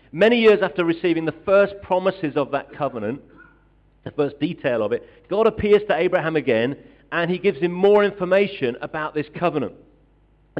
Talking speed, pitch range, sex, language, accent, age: 170 wpm, 145-185 Hz, male, English, British, 40-59